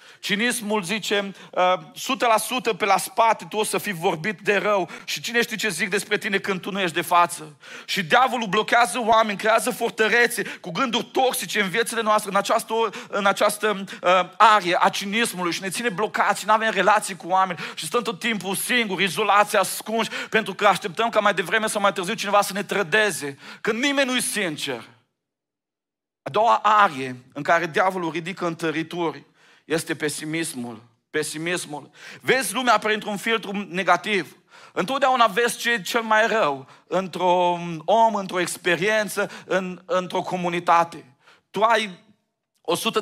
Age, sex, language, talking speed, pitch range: 40-59, male, Romanian, 160 wpm, 170-215 Hz